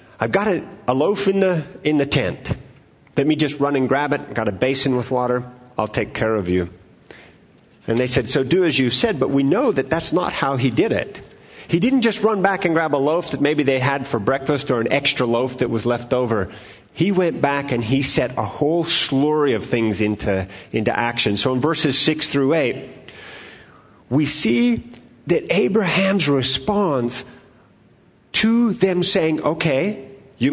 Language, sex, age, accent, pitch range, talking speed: English, male, 50-69, American, 130-180 Hz, 195 wpm